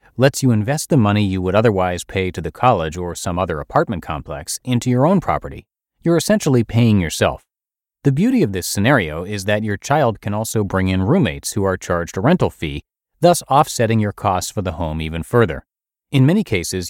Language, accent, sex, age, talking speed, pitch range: English, American, male, 30-49, 200 wpm, 85-125 Hz